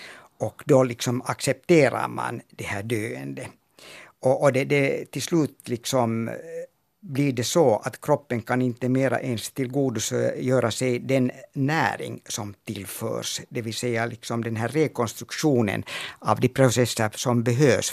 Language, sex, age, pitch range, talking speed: Finnish, male, 60-79, 110-130 Hz, 145 wpm